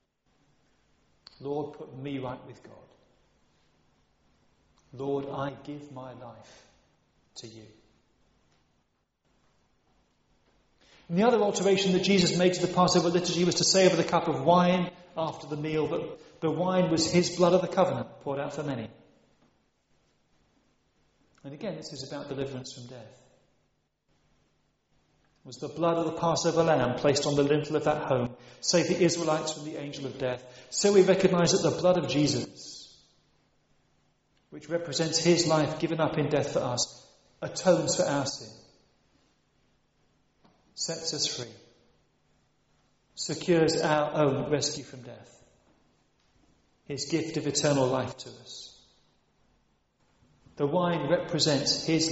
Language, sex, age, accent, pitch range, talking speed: English, male, 40-59, British, 125-170 Hz, 140 wpm